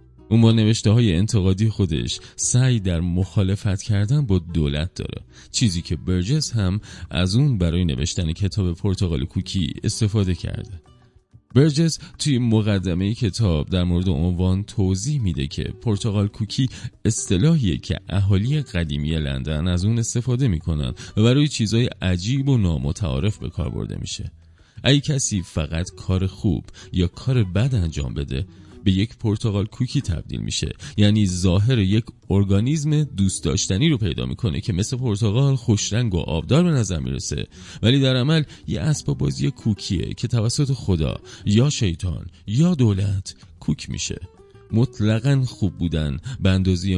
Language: Persian